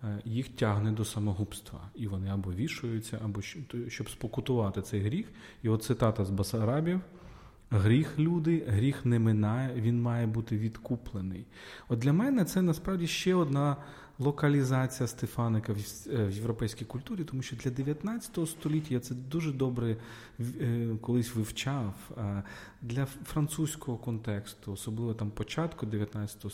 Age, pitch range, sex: 40-59, 110-145 Hz, male